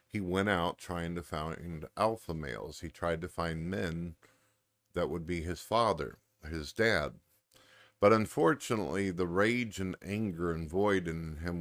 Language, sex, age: English, male, 50-69